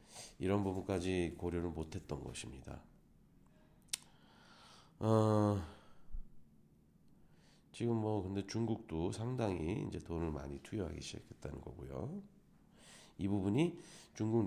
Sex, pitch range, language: male, 80-105 Hz, Korean